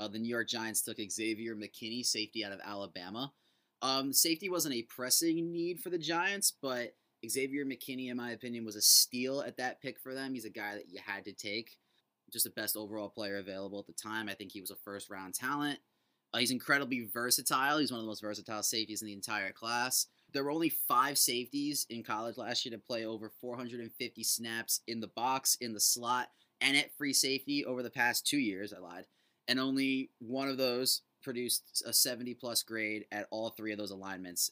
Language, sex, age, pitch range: English, male, 20-39, 105-130 Hz